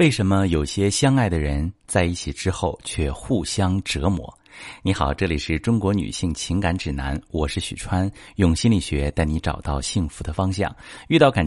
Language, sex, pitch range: Chinese, male, 80-110 Hz